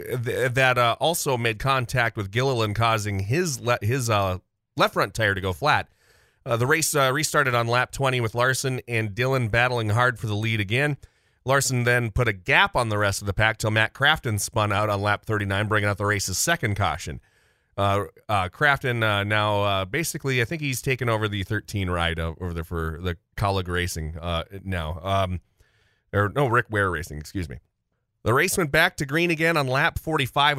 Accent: American